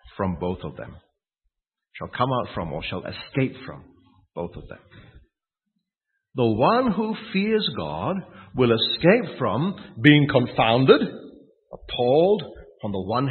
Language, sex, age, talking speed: English, male, 50-69, 130 wpm